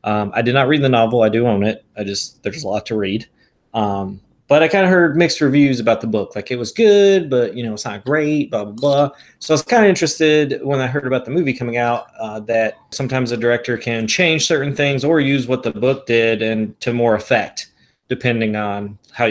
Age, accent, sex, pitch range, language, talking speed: 30-49, American, male, 115-150 Hz, English, 240 wpm